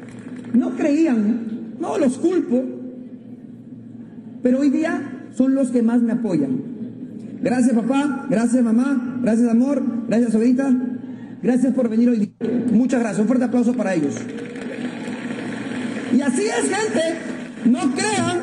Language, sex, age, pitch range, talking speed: Portuguese, male, 40-59, 240-280 Hz, 130 wpm